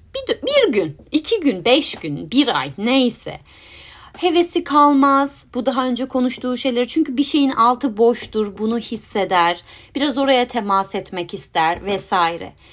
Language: Turkish